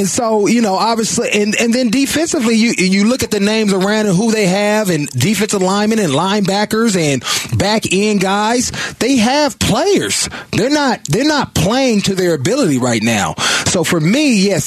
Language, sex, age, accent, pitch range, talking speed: English, male, 30-49, American, 145-205 Hz, 190 wpm